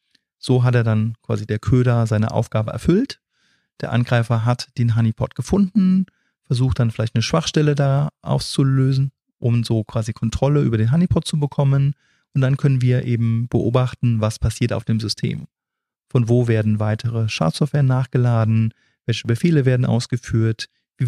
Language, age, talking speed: German, 30-49, 155 wpm